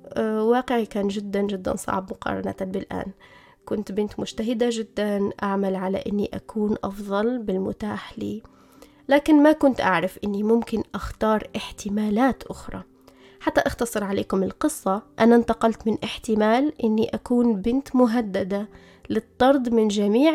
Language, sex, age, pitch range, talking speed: Arabic, female, 20-39, 205-245 Hz, 125 wpm